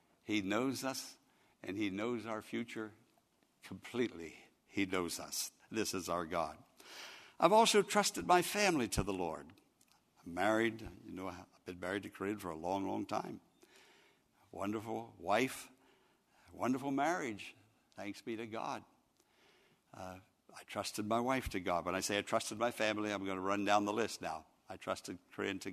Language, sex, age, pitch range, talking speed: English, male, 60-79, 95-120 Hz, 170 wpm